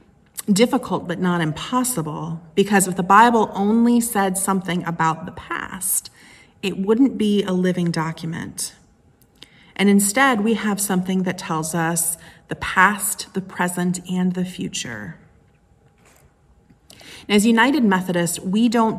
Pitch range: 165-200 Hz